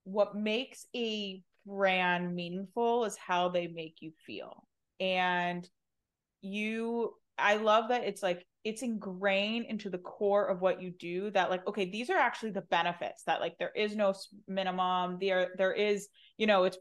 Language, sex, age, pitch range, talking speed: English, female, 20-39, 175-205 Hz, 170 wpm